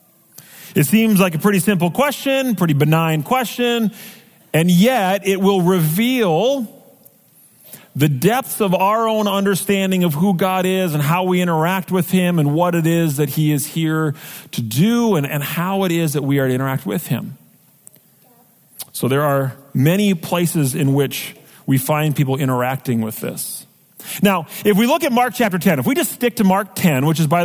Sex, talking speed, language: male, 185 wpm, English